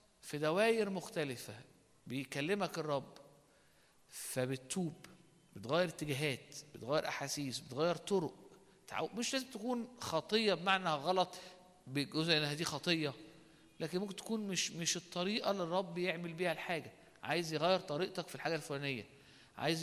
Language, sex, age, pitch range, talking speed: Arabic, male, 50-69, 150-205 Hz, 120 wpm